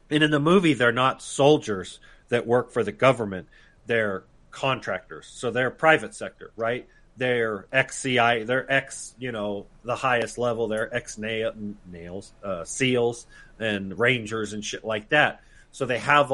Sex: male